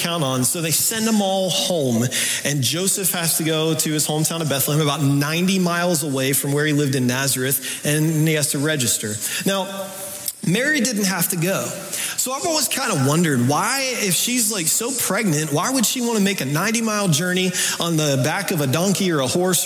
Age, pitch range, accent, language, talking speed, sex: 30-49, 145-195 Hz, American, English, 215 wpm, male